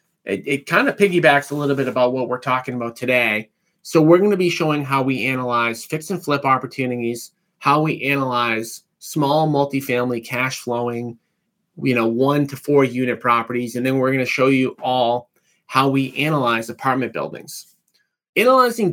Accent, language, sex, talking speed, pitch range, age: American, English, male, 175 wpm, 125-155 Hz, 30-49